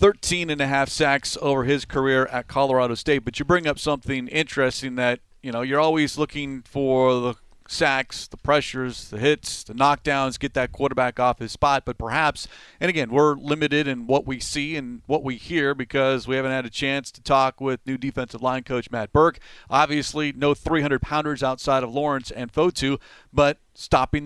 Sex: male